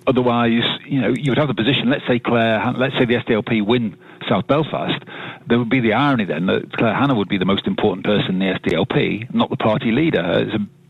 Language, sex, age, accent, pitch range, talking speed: English, male, 40-59, British, 100-130 Hz, 230 wpm